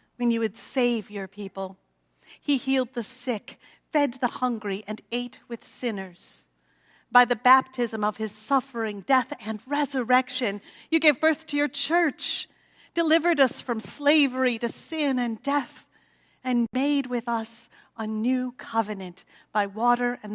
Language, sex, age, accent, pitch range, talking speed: English, female, 50-69, American, 175-255 Hz, 145 wpm